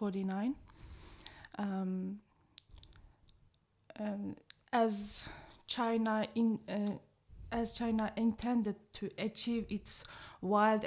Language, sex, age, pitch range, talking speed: English, female, 20-39, 205-240 Hz, 65 wpm